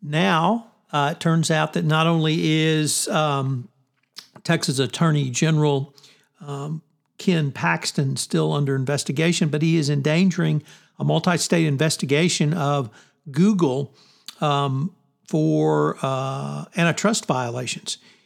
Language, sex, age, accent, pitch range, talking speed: English, male, 60-79, American, 140-170 Hz, 110 wpm